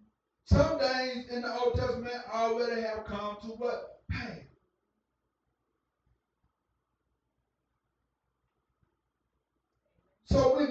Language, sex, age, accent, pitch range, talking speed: English, male, 40-59, American, 180-255 Hz, 80 wpm